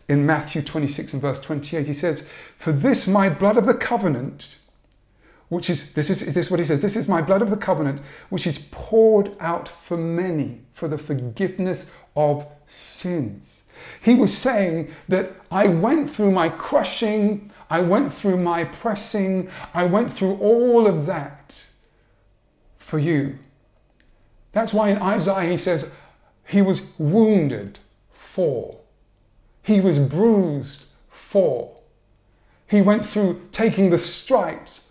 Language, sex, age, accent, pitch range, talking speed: English, male, 50-69, British, 140-195 Hz, 145 wpm